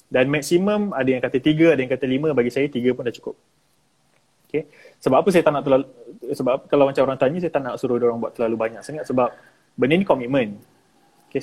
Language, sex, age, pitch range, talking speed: Malay, male, 20-39, 120-160 Hz, 230 wpm